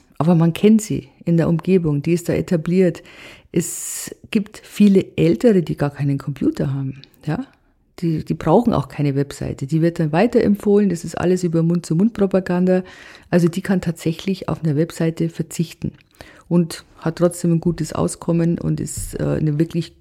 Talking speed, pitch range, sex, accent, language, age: 160 wpm, 160-195 Hz, female, German, German, 50-69